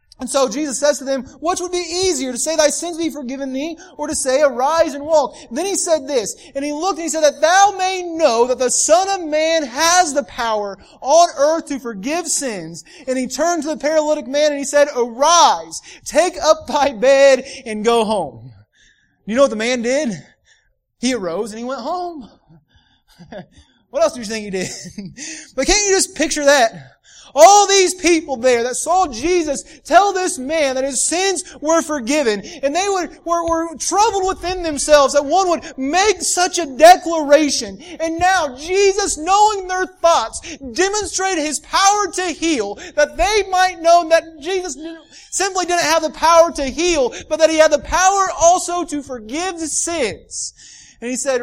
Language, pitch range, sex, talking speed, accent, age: English, 270-350 Hz, male, 190 wpm, American, 30-49